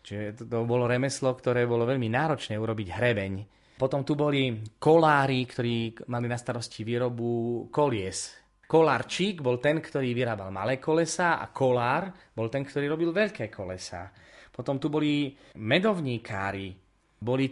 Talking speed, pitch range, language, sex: 135 wpm, 110-140 Hz, Slovak, male